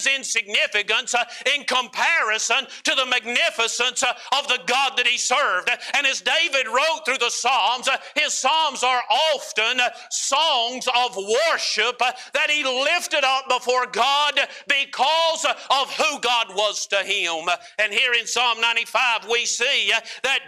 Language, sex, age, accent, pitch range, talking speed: English, male, 50-69, American, 225-260 Hz, 140 wpm